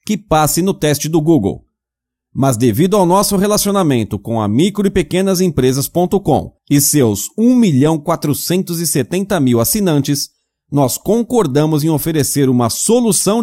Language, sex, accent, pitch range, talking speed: English, male, Brazilian, 135-195 Hz, 120 wpm